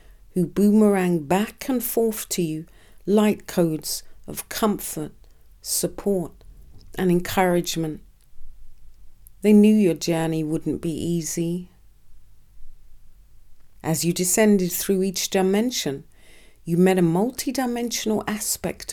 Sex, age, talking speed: female, 50-69, 100 wpm